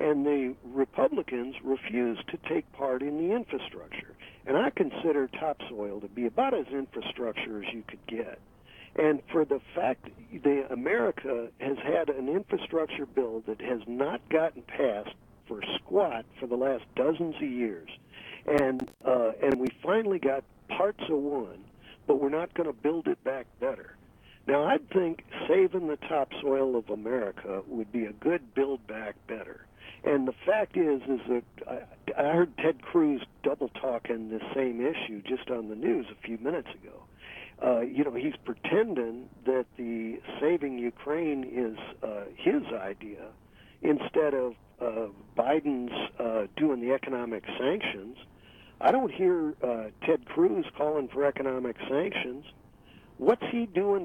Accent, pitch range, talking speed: American, 115-155 Hz, 155 wpm